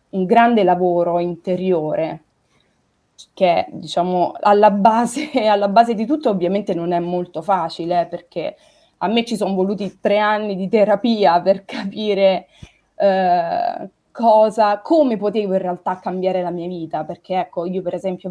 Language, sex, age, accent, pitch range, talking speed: Italian, female, 20-39, native, 175-215 Hz, 145 wpm